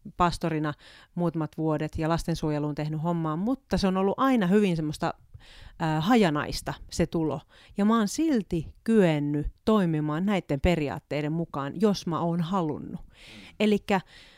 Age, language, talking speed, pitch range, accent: 30-49, Finnish, 130 wpm, 155-215 Hz, native